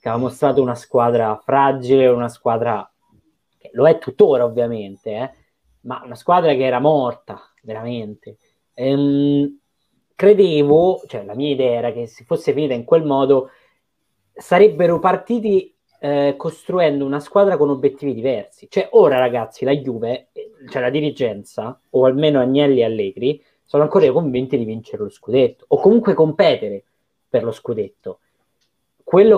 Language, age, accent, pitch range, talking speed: Italian, 20-39, native, 125-170 Hz, 145 wpm